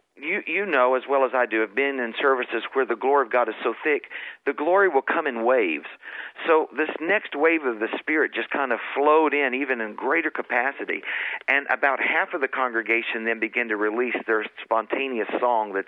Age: 50-69